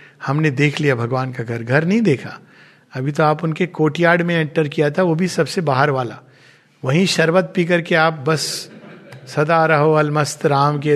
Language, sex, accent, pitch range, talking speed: Hindi, male, native, 140-205 Hz, 185 wpm